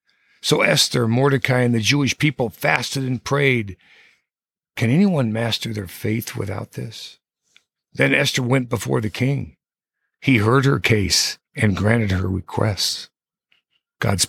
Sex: male